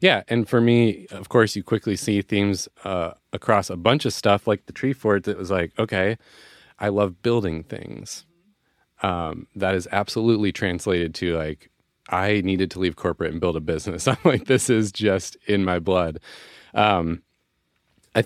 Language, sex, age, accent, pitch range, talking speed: English, male, 30-49, American, 90-110 Hz, 180 wpm